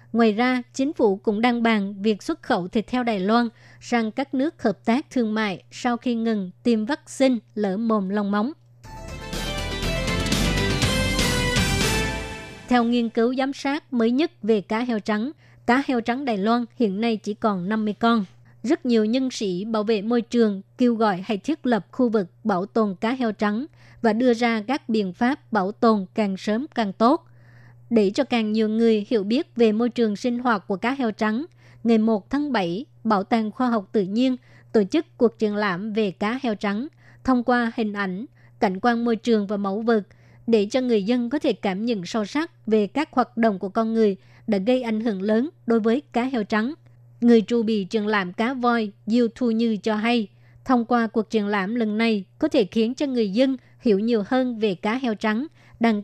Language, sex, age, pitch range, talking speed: Vietnamese, male, 20-39, 210-240 Hz, 205 wpm